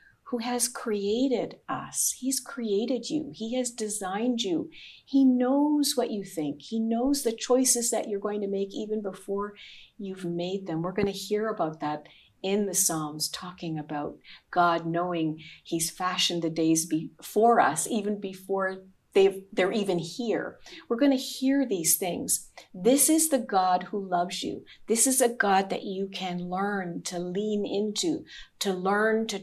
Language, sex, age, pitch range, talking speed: English, female, 50-69, 185-250 Hz, 165 wpm